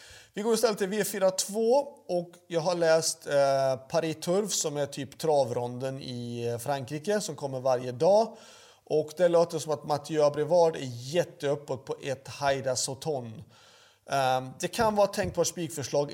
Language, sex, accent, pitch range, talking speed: Swedish, male, native, 145-180 Hz, 160 wpm